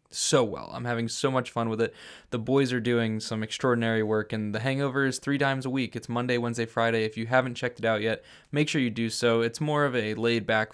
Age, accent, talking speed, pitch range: 20-39, American, 255 wpm, 115-140 Hz